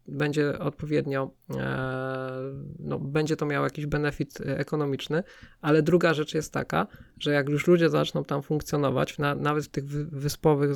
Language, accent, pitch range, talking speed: Polish, native, 145-160 Hz, 135 wpm